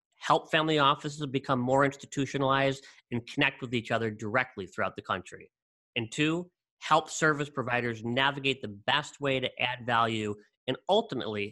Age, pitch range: 40-59, 125-155 Hz